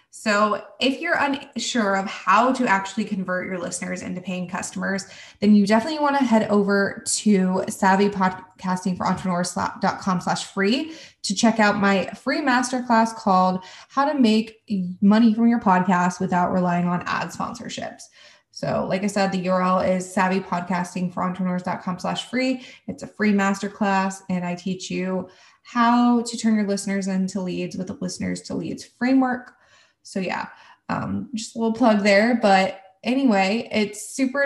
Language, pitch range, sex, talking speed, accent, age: English, 185-235 Hz, female, 150 wpm, American, 20-39